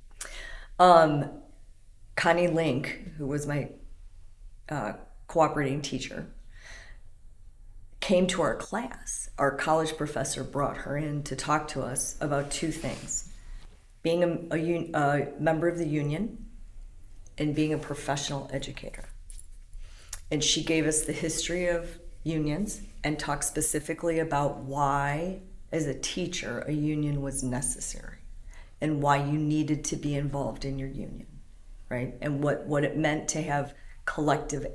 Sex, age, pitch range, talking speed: female, 40-59, 135-160 Hz, 135 wpm